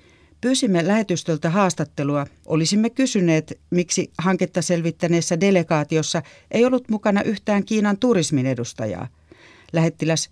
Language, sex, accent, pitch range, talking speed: Finnish, female, native, 145-180 Hz, 100 wpm